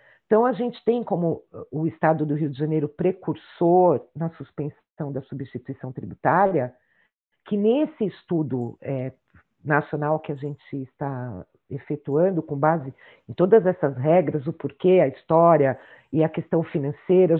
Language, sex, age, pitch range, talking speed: Portuguese, female, 50-69, 155-205 Hz, 140 wpm